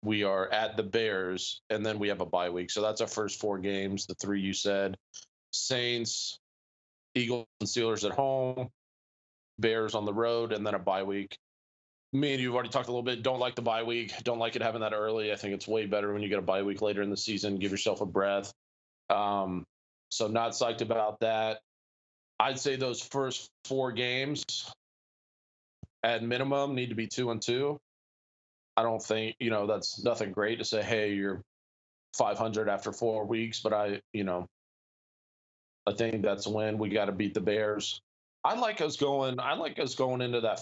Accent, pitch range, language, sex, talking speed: American, 100-120 Hz, English, male, 200 wpm